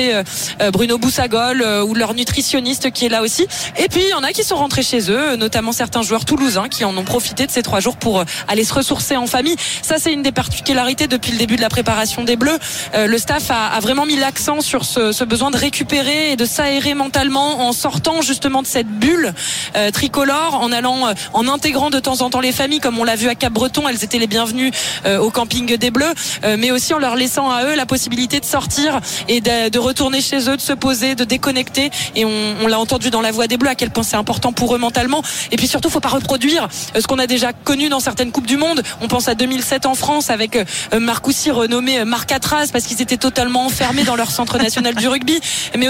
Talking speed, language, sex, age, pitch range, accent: 235 wpm, French, female, 20-39, 235-280 Hz, French